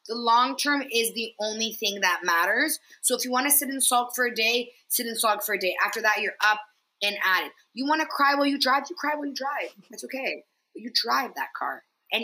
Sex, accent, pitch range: female, American, 205-260 Hz